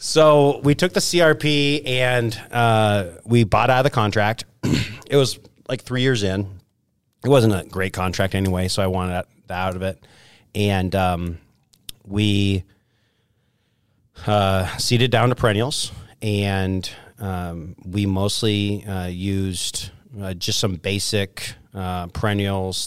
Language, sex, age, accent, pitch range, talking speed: English, male, 30-49, American, 90-110 Hz, 135 wpm